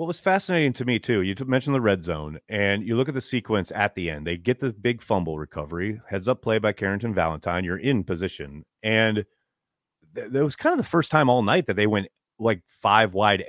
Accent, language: American, English